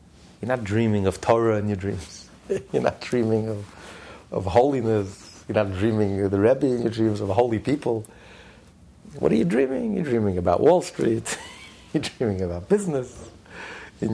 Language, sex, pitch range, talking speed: English, male, 95-160 Hz, 175 wpm